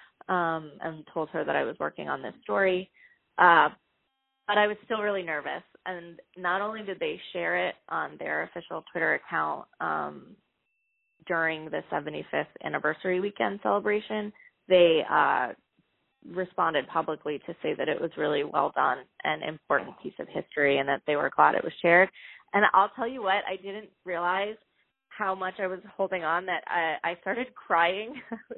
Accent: American